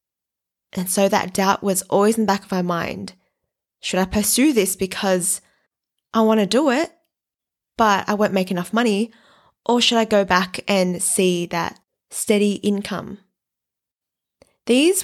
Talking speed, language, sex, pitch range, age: 155 wpm, English, female, 190-240 Hz, 20-39